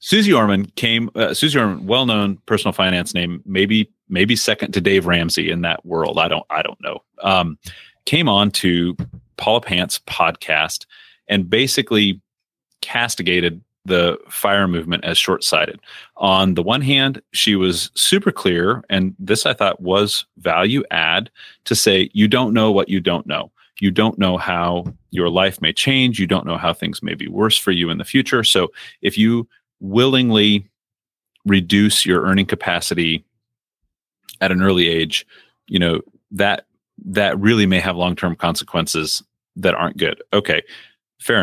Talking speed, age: 160 wpm, 30-49